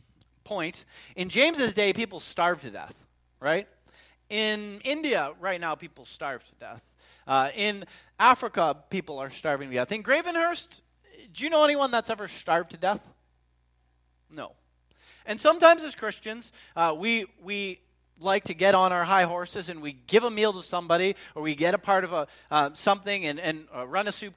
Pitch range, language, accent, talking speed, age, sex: 150-220 Hz, English, American, 180 wpm, 40-59, male